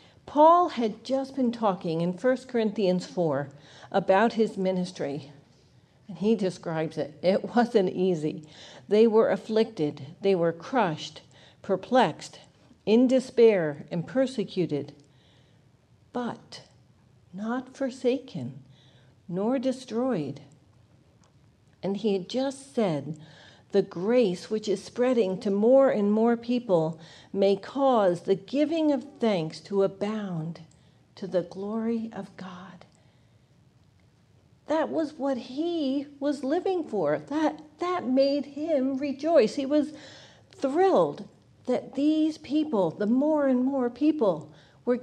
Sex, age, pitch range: female, 60-79, 155-255 Hz